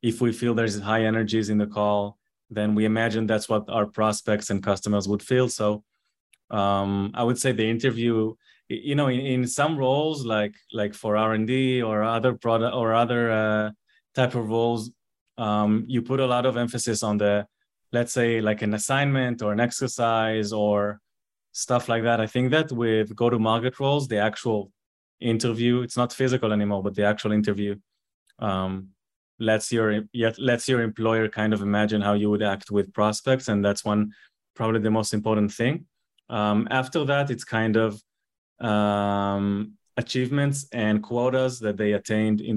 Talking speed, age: 175 wpm, 20-39